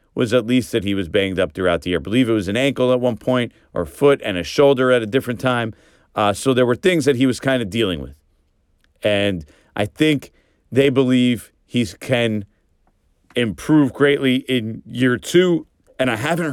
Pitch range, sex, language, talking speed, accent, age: 90-130 Hz, male, English, 205 wpm, American, 40-59